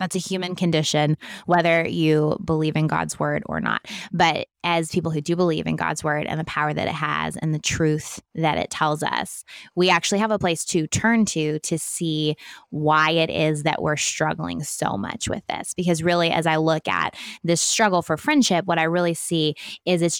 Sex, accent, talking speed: female, American, 210 wpm